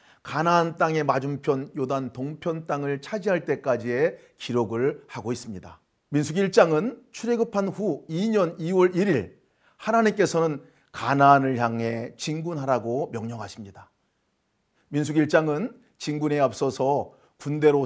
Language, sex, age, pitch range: Korean, male, 40-59, 130-180 Hz